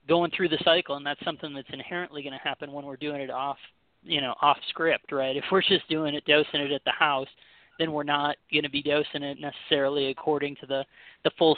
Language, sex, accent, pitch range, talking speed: English, male, American, 135-150 Hz, 240 wpm